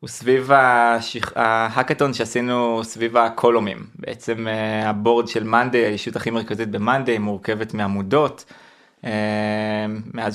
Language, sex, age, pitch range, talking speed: Hebrew, male, 20-39, 115-145 Hz, 100 wpm